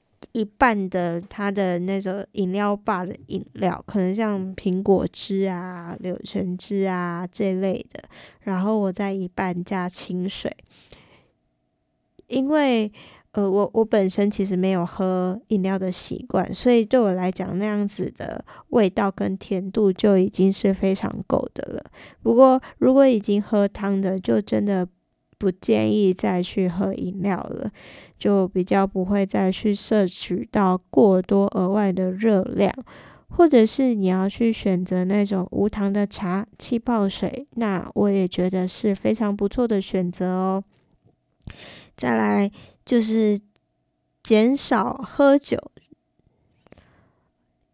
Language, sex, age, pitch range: Chinese, female, 10-29, 185-220 Hz